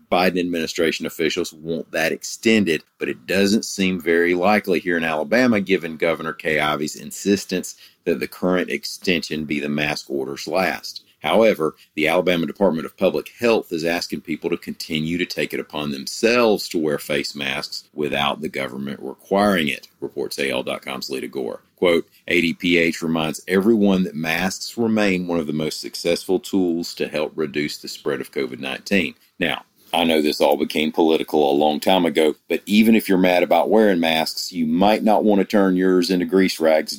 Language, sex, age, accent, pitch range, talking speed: English, male, 40-59, American, 80-100 Hz, 175 wpm